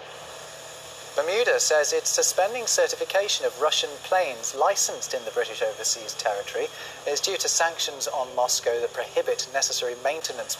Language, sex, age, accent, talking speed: English, male, 40-59, British, 135 wpm